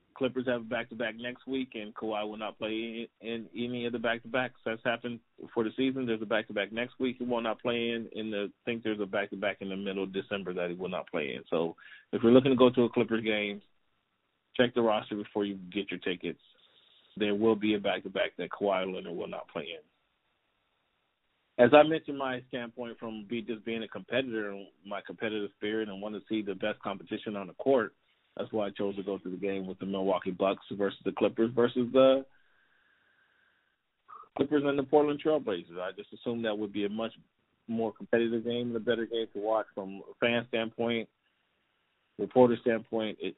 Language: English